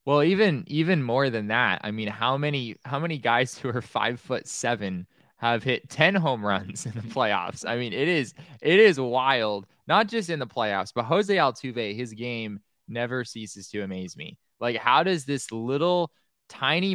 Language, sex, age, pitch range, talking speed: English, male, 20-39, 115-150 Hz, 190 wpm